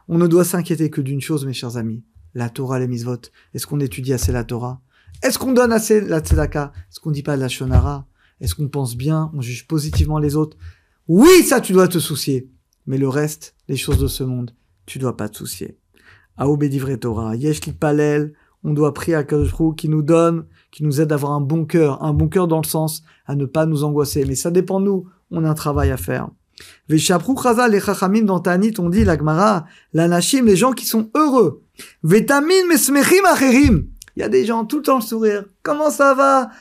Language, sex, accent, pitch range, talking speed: French, male, French, 140-220 Hz, 215 wpm